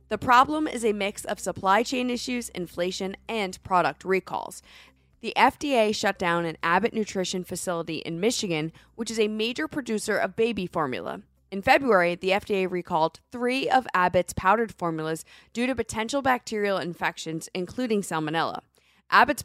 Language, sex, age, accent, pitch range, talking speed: English, female, 20-39, American, 175-230 Hz, 150 wpm